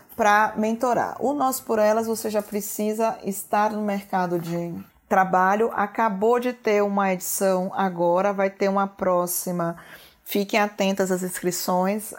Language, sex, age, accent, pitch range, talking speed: Portuguese, female, 20-39, Brazilian, 185-220 Hz, 140 wpm